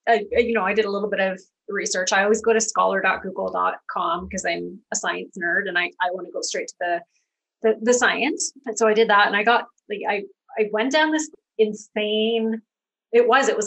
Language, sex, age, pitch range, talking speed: English, female, 30-49, 195-245 Hz, 225 wpm